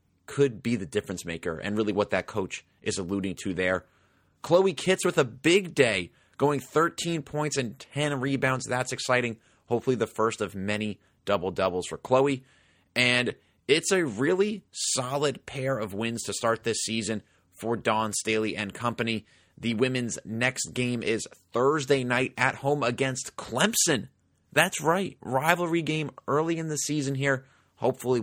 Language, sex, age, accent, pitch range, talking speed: English, male, 30-49, American, 100-150 Hz, 155 wpm